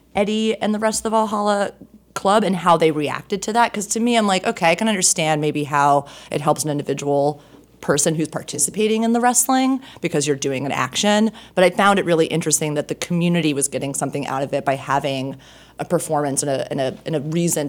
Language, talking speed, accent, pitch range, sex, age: English, 225 wpm, American, 140-175 Hz, female, 30-49